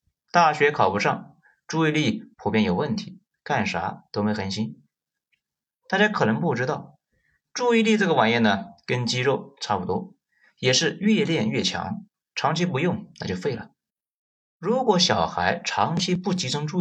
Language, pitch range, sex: Chinese, 125-205 Hz, male